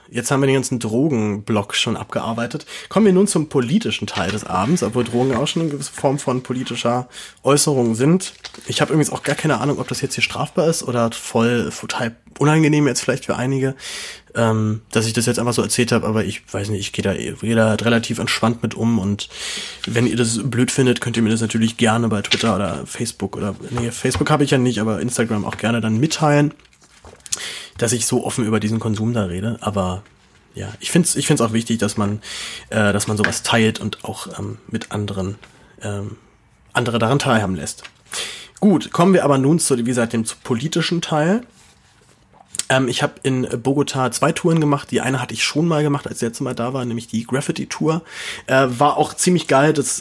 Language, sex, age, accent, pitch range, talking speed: German, male, 30-49, German, 115-140 Hz, 210 wpm